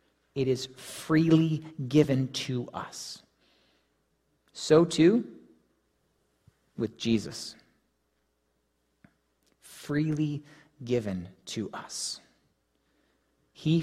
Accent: American